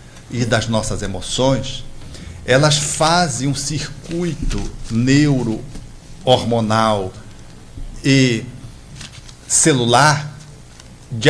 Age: 60-79